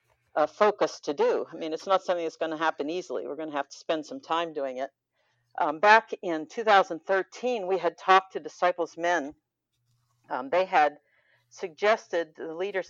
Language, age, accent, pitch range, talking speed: English, 50-69, American, 150-185 Hz, 185 wpm